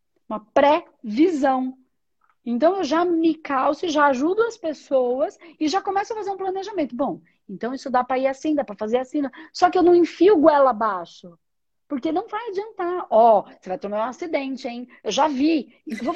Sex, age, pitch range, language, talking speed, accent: female, 40-59, 235-330 Hz, Portuguese, 205 wpm, Brazilian